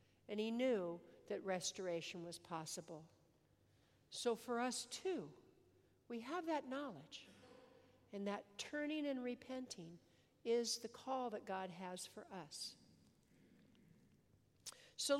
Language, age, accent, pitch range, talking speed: English, 60-79, American, 215-285 Hz, 115 wpm